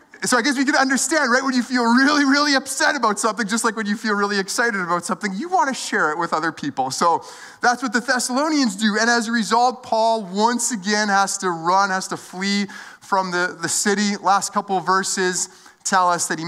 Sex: male